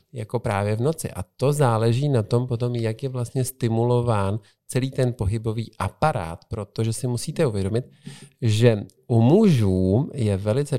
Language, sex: Czech, male